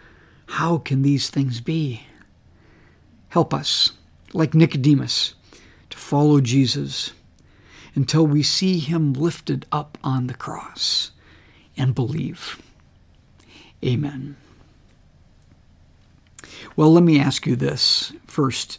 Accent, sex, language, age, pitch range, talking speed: American, male, English, 60-79, 115-165 Hz, 100 wpm